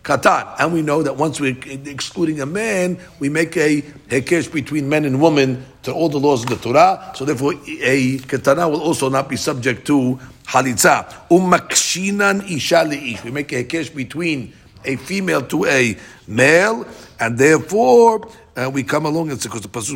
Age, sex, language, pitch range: 50-69, male, English, 120-150 Hz